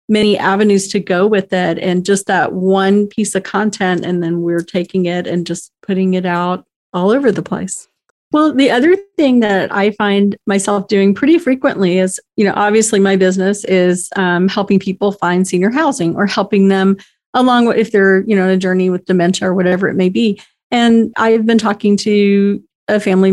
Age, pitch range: 40-59, 190-230 Hz